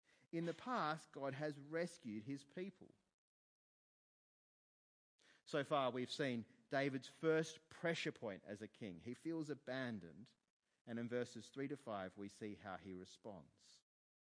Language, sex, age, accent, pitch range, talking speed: English, male, 30-49, Australian, 130-160 Hz, 140 wpm